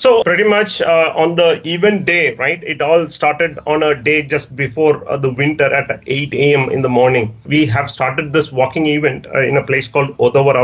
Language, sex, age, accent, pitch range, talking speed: English, male, 30-49, Indian, 135-160 Hz, 215 wpm